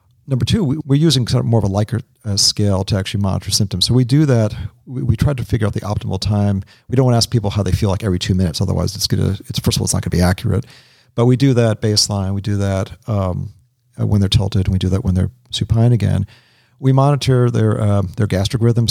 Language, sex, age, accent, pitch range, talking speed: English, male, 40-59, American, 100-120 Hz, 250 wpm